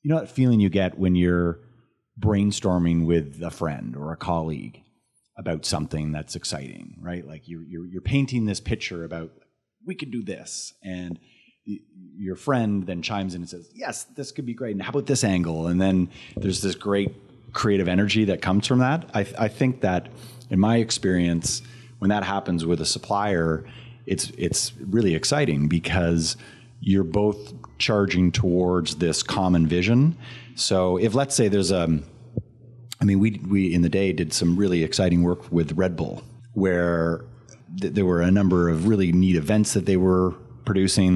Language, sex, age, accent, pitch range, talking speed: English, male, 30-49, American, 85-120 Hz, 180 wpm